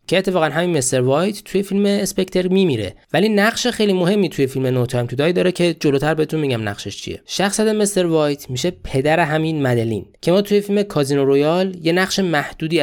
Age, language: 20-39, Persian